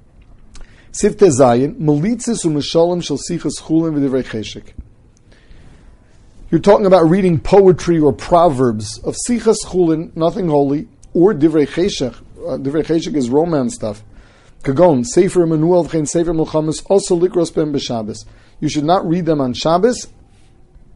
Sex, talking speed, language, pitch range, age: male, 100 wpm, English, 130-170 Hz, 40-59